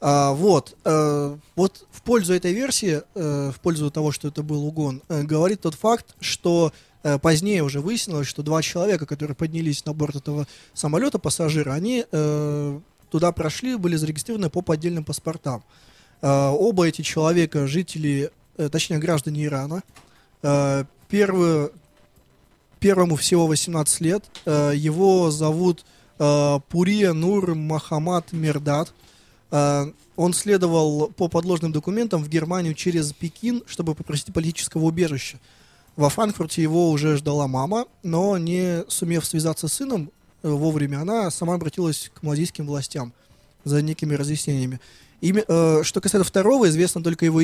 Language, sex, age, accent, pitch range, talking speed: Russian, male, 20-39, native, 145-175 Hz, 125 wpm